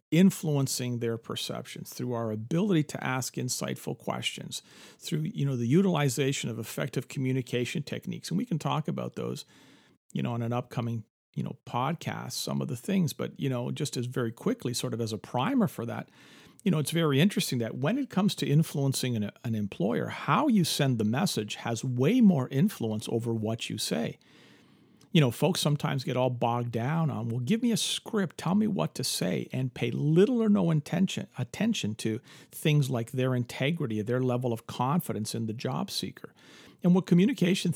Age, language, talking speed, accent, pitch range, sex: 50-69, English, 190 wpm, American, 120-170 Hz, male